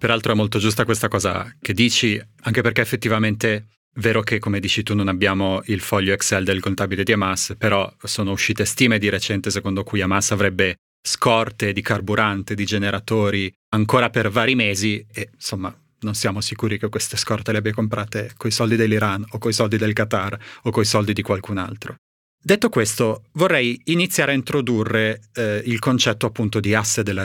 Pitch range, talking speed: 105-120 Hz, 185 wpm